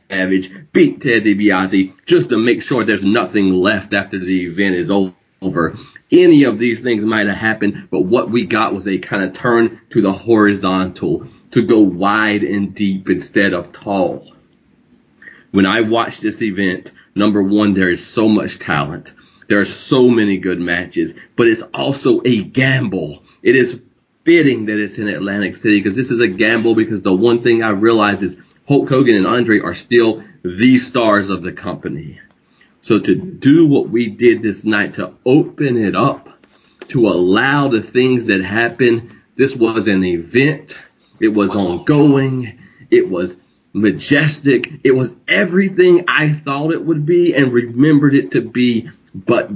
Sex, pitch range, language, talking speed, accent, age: male, 95-120 Hz, English, 170 wpm, American, 30-49